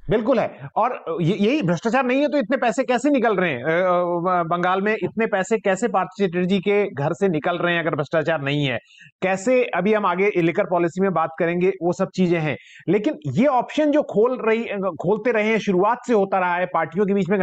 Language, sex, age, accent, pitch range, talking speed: Hindi, male, 30-49, native, 175-215 Hz, 215 wpm